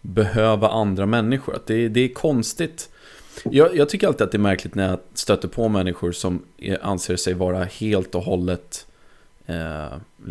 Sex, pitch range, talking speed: male, 95-115 Hz, 170 wpm